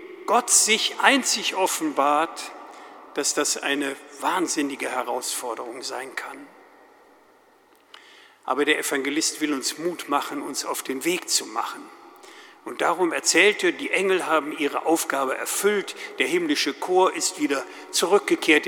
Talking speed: 130 wpm